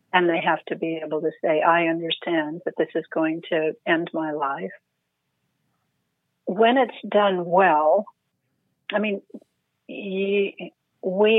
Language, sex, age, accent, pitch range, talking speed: English, female, 60-79, American, 165-190 Hz, 130 wpm